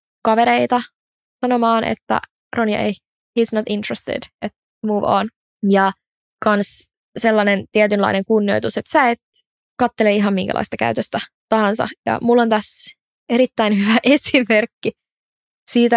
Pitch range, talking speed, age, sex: 210-255 Hz, 120 wpm, 20-39, female